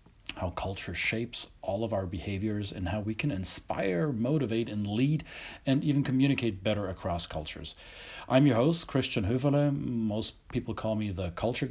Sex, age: male, 40-59